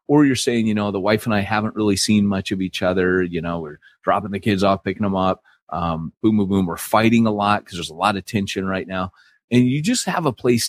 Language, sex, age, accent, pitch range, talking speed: English, male, 30-49, American, 85-105 Hz, 270 wpm